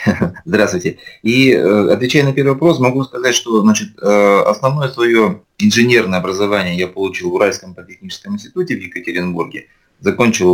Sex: male